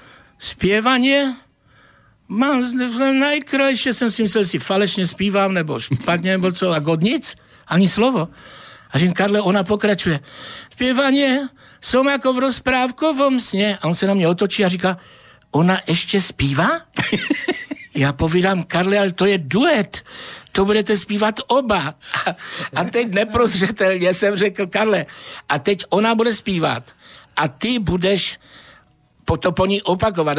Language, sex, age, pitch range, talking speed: Slovak, male, 60-79, 150-215 Hz, 140 wpm